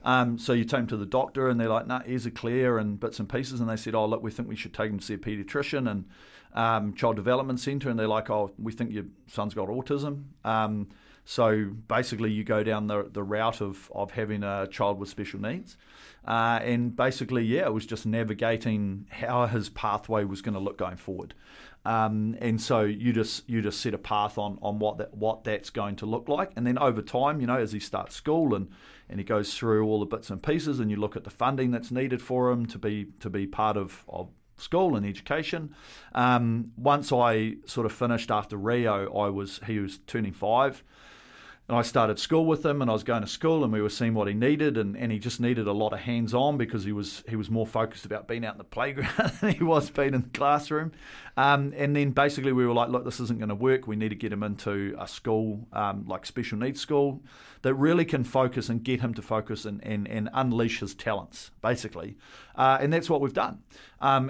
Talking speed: 240 wpm